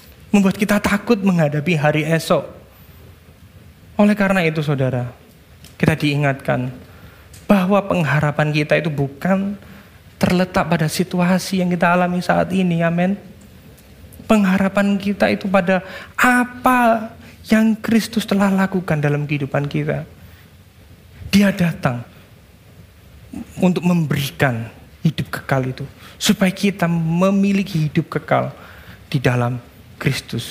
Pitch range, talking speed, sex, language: 135-210 Hz, 105 wpm, male, Indonesian